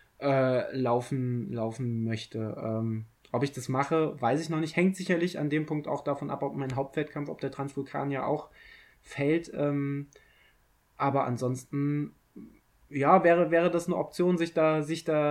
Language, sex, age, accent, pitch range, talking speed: German, male, 20-39, German, 130-155 Hz, 170 wpm